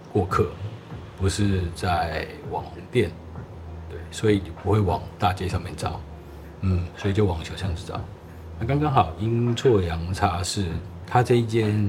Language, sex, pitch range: Chinese, male, 85-105 Hz